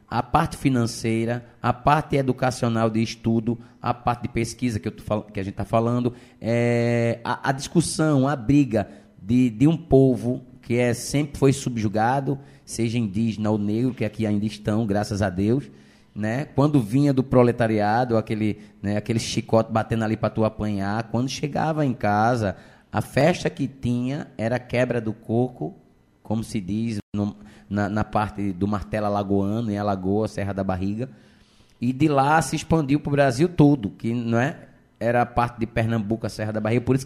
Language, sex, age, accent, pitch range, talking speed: Portuguese, male, 20-39, Brazilian, 105-130 Hz, 170 wpm